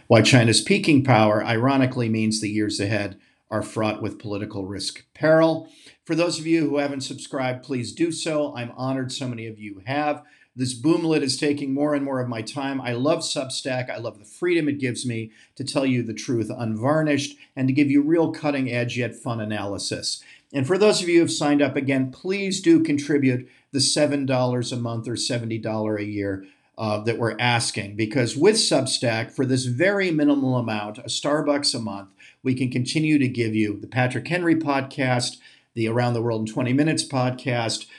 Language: English